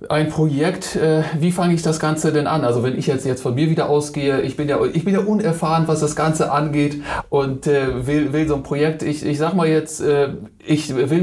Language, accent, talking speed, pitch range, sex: German, German, 240 wpm, 140-165 Hz, male